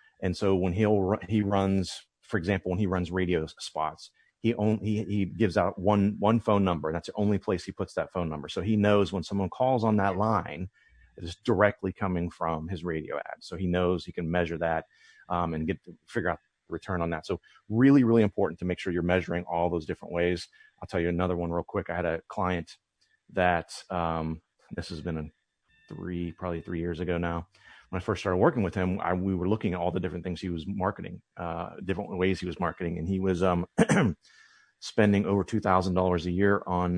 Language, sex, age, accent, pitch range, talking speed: English, male, 30-49, American, 85-105 Hz, 220 wpm